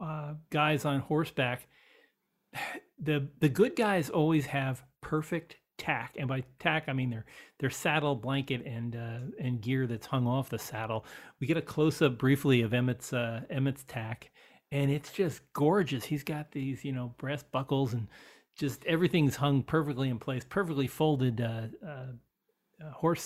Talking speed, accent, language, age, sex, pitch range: 165 wpm, American, English, 40-59, male, 125-155 Hz